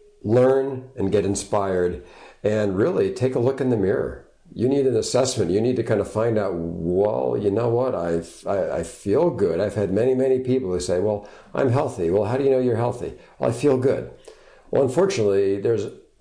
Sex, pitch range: male, 95-140 Hz